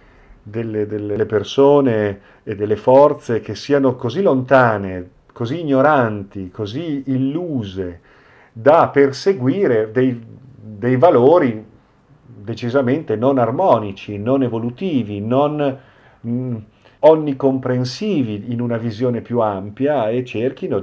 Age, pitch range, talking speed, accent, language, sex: 50-69, 105-130 Hz, 95 wpm, native, Italian, male